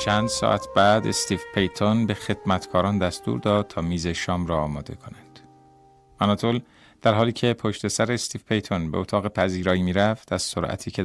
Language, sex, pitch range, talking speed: Persian, male, 90-110 Hz, 165 wpm